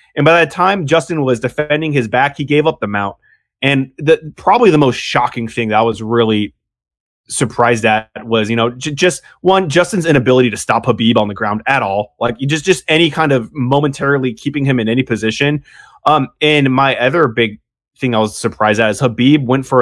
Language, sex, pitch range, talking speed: English, male, 115-145 Hz, 210 wpm